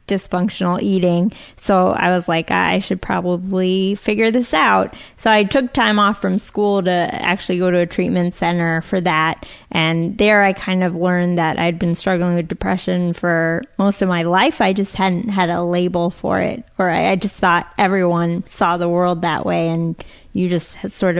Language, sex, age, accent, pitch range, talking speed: English, female, 20-39, American, 175-195 Hz, 190 wpm